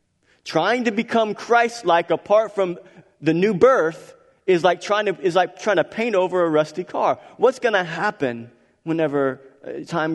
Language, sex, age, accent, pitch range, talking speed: English, male, 40-59, American, 155-230 Hz, 160 wpm